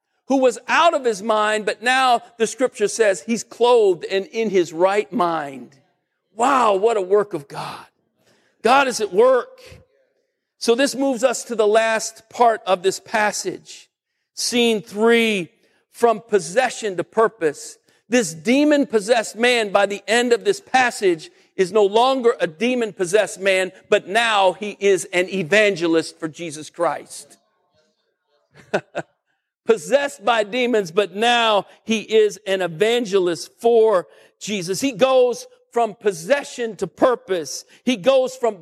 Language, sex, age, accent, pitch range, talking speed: English, male, 50-69, American, 200-270 Hz, 140 wpm